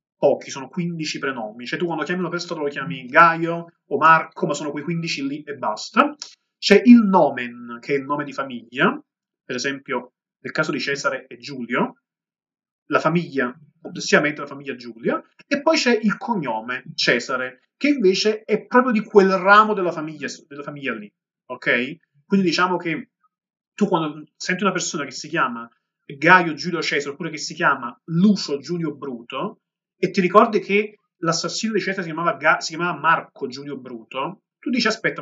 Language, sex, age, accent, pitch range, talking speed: Italian, male, 30-49, native, 145-200 Hz, 175 wpm